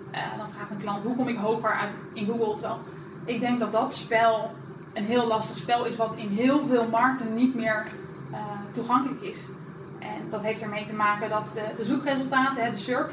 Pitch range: 215-245 Hz